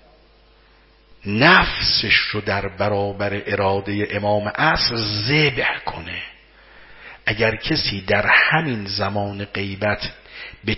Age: 50-69